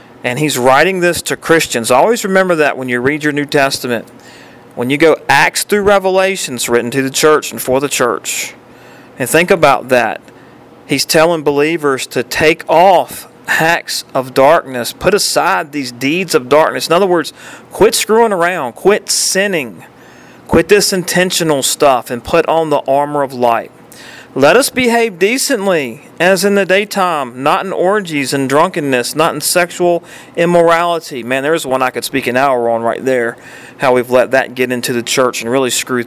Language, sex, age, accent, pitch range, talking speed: English, male, 40-59, American, 125-160 Hz, 175 wpm